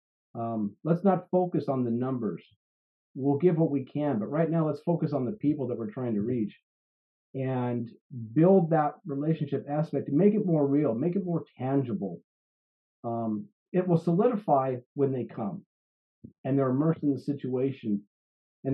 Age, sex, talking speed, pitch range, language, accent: 40-59, male, 170 wpm, 120-160 Hz, English, American